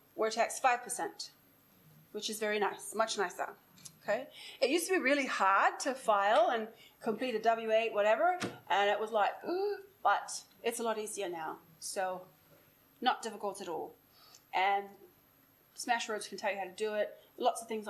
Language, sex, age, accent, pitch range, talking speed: English, female, 30-49, Australian, 210-290 Hz, 170 wpm